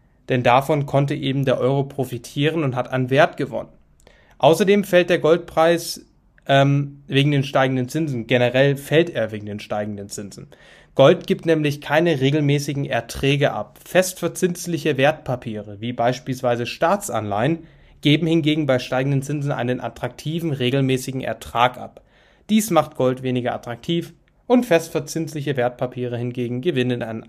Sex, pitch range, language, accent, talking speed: male, 125-150 Hz, English, German, 135 wpm